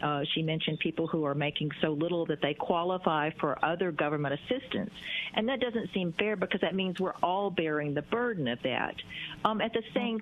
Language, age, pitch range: English, 50-69, 165-215 Hz